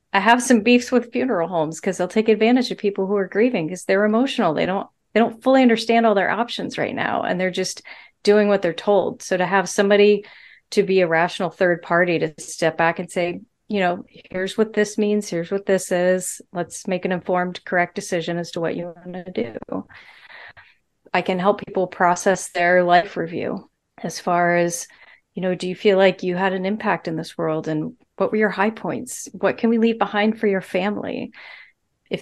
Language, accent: English, American